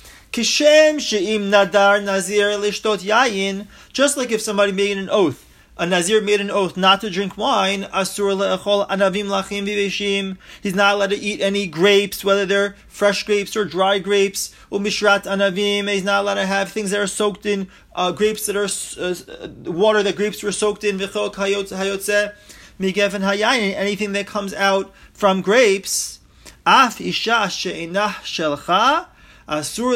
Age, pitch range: 30-49, 180-210 Hz